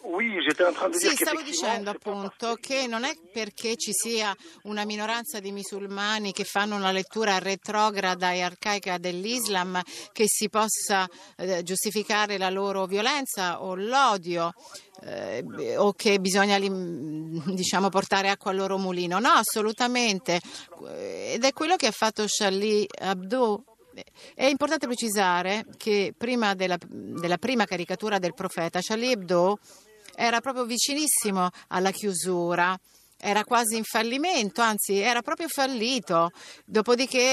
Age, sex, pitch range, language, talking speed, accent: 50-69, female, 190-240 Hz, Italian, 125 wpm, native